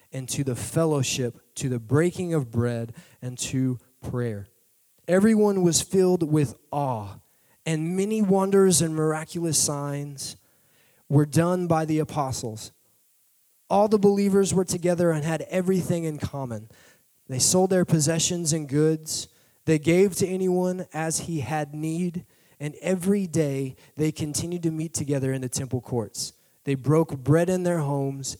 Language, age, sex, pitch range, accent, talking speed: English, 20-39, male, 125-165 Hz, American, 150 wpm